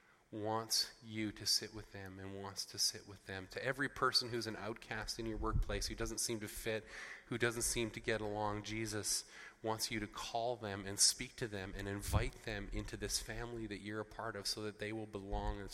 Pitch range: 100-130 Hz